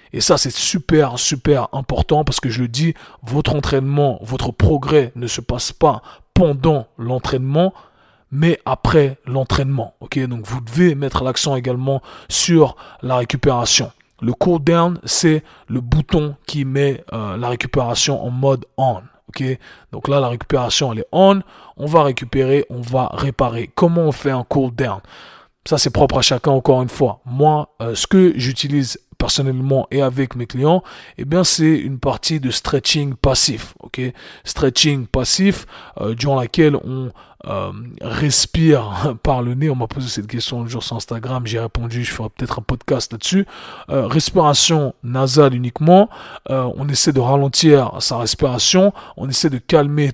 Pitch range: 125-150 Hz